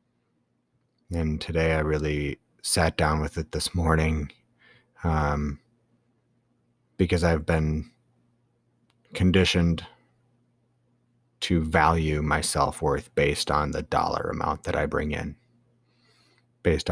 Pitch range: 80-120 Hz